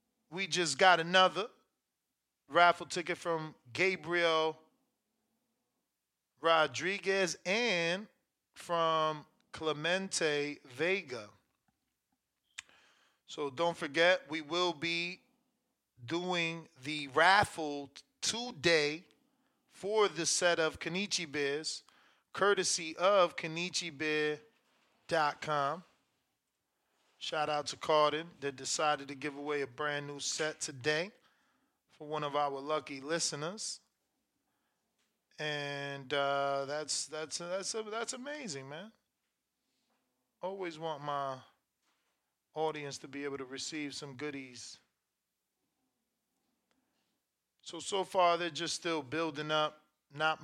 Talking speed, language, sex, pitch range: 95 wpm, English, male, 150-185 Hz